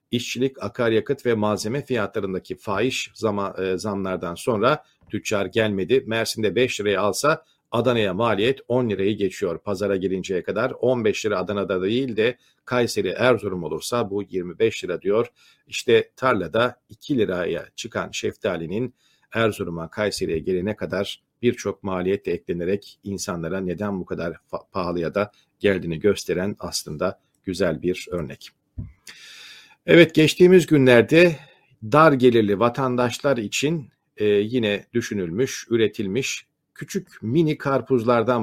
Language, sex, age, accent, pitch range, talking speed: Turkish, male, 50-69, native, 100-140 Hz, 115 wpm